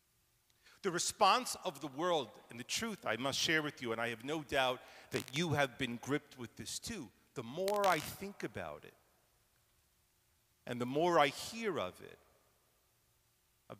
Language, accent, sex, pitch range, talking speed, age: English, American, male, 115-165 Hz, 175 wpm, 50-69